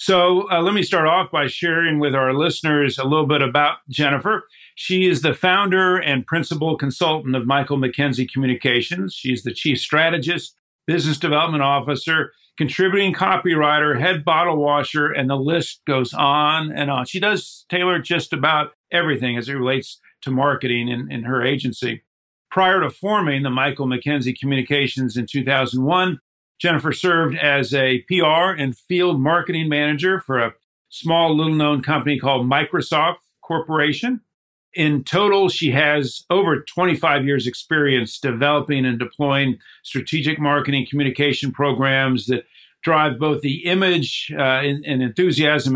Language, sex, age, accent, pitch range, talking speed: English, male, 50-69, American, 135-165 Hz, 145 wpm